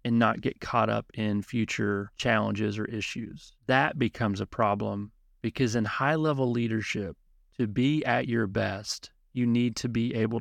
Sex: male